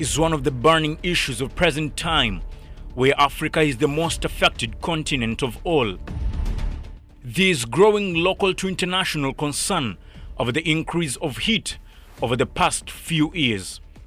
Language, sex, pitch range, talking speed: Swahili, male, 140-180 Hz, 140 wpm